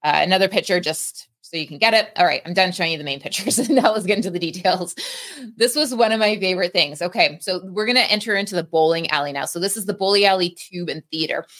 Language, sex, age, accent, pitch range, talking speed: English, female, 20-39, American, 170-215 Hz, 265 wpm